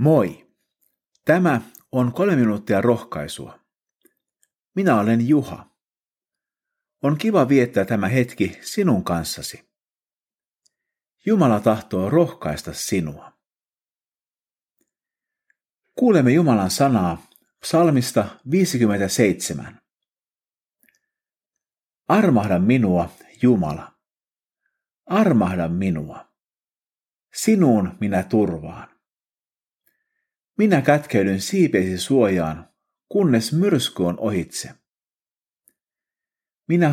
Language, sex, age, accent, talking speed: Finnish, male, 50-69, native, 70 wpm